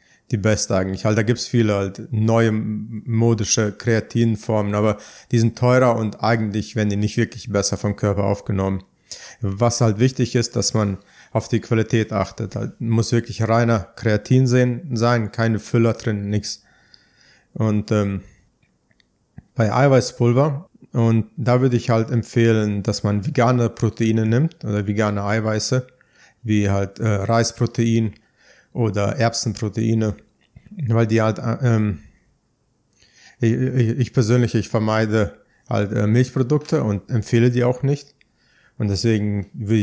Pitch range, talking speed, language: 105-125 Hz, 130 wpm, German